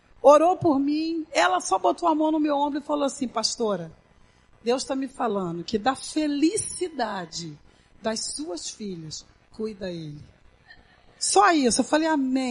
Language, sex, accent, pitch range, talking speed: Portuguese, female, Brazilian, 240-360 Hz, 155 wpm